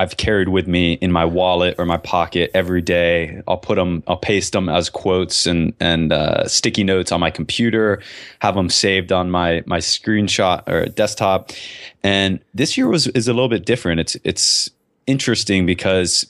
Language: English